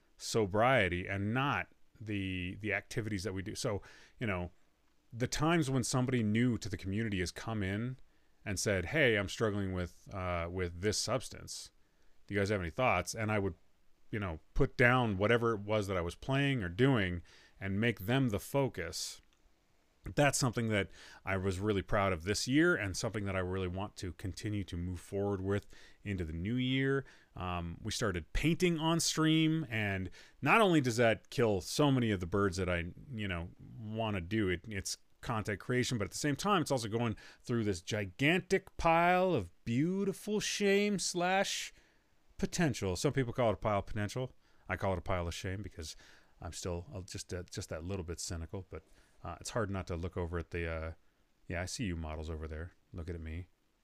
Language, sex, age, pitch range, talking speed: English, male, 30-49, 90-125 Hz, 195 wpm